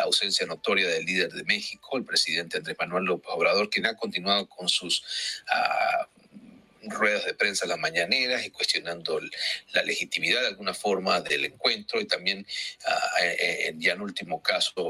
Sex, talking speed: male, 170 wpm